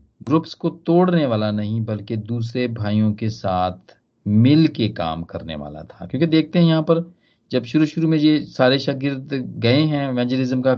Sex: male